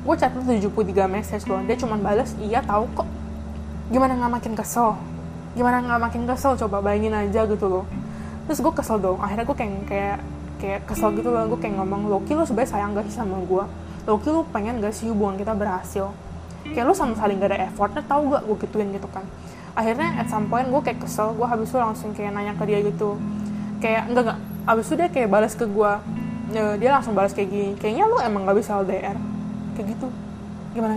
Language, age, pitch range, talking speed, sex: Indonesian, 10-29, 200-230 Hz, 205 wpm, female